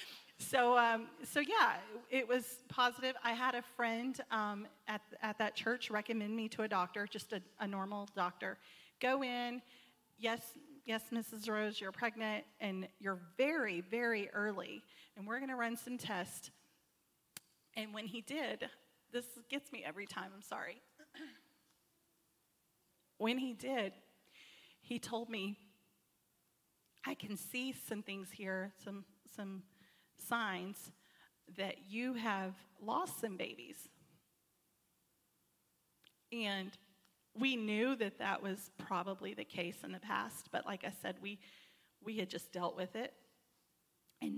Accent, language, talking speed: American, English, 135 wpm